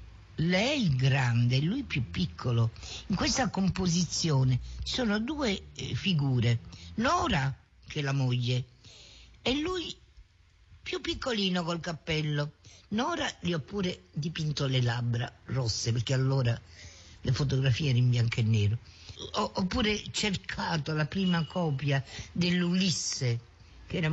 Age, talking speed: 50-69, 130 wpm